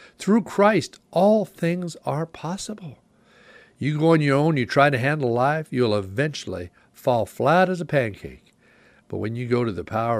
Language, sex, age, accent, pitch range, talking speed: English, male, 60-79, American, 110-145 Hz, 175 wpm